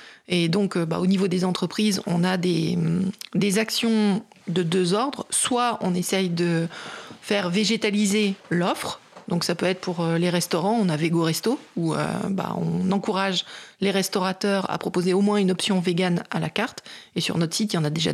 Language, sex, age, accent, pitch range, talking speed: French, female, 30-49, French, 180-215 Hz, 195 wpm